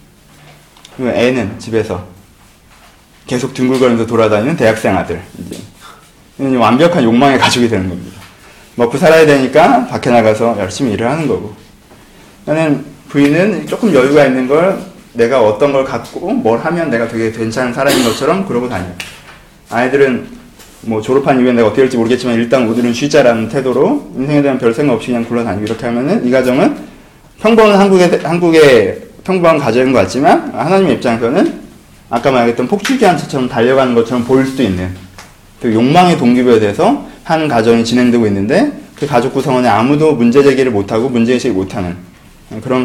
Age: 30-49